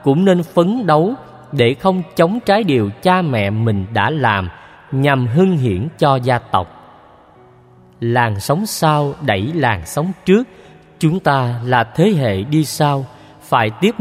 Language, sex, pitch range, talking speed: Vietnamese, male, 120-170 Hz, 155 wpm